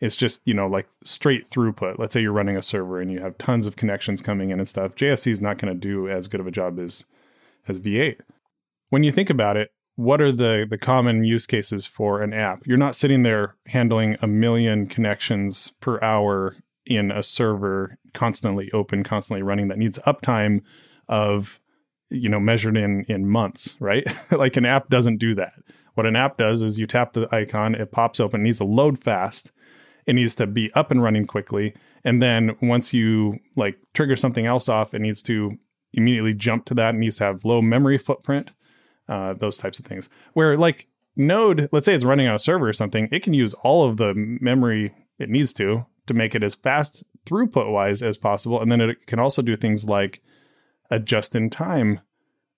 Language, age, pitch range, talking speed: English, 20-39, 105-125 Hz, 205 wpm